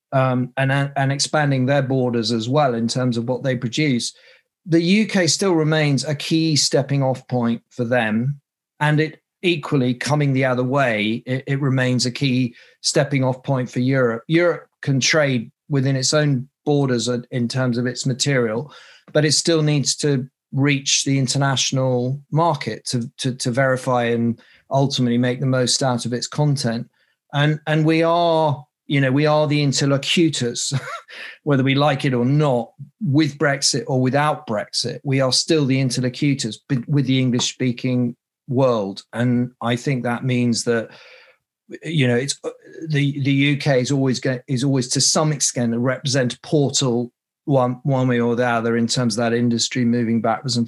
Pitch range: 125-145 Hz